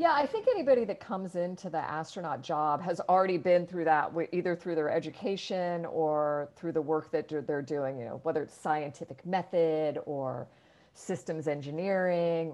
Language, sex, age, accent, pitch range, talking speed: English, female, 50-69, American, 150-190 Hz, 165 wpm